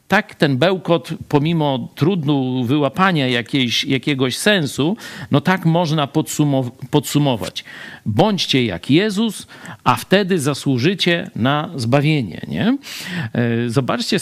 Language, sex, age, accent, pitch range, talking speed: Polish, male, 50-69, native, 120-170 Hz, 90 wpm